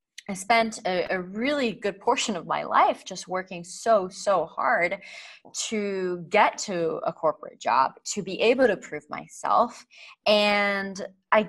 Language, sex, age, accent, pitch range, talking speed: English, female, 20-39, American, 170-230 Hz, 150 wpm